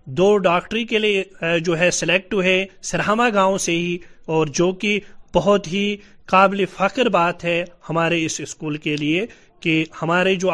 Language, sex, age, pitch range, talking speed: Urdu, male, 30-49, 175-215 Hz, 165 wpm